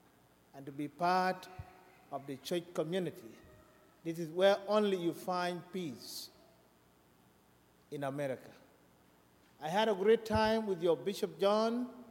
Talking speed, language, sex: 130 wpm, English, male